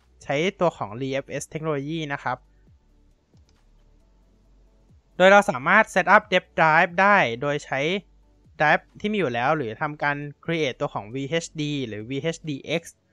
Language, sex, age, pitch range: Thai, male, 20-39, 135-185 Hz